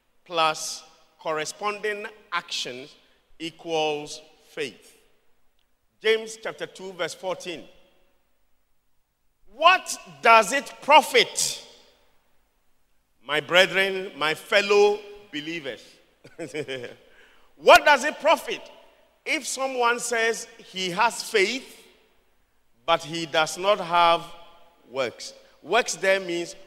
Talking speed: 85 wpm